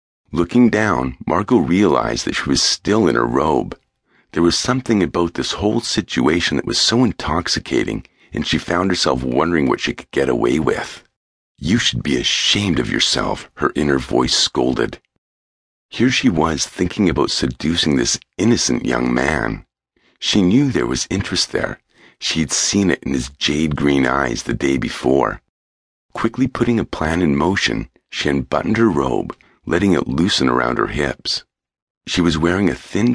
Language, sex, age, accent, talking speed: English, male, 50-69, American, 165 wpm